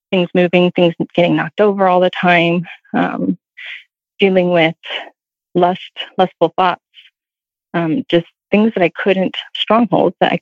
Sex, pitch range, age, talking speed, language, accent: female, 170-190 Hz, 30-49, 140 wpm, English, American